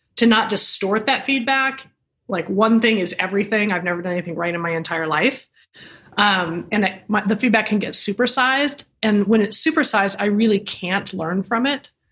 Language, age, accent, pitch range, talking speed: English, 30-49, American, 180-220 Hz, 190 wpm